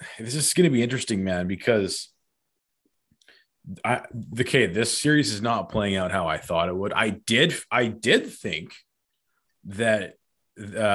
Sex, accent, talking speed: male, American, 165 wpm